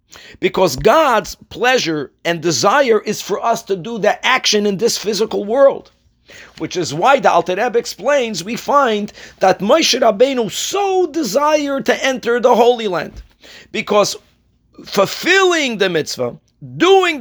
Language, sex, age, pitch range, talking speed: English, male, 50-69, 185-250 Hz, 135 wpm